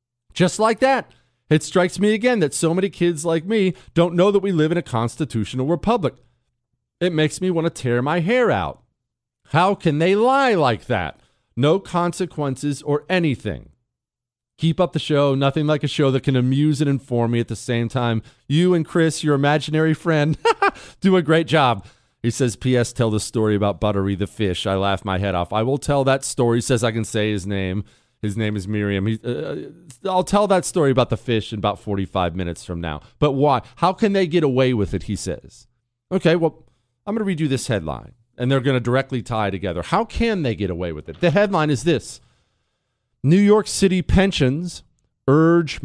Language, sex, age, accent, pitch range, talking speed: English, male, 40-59, American, 115-170 Hz, 205 wpm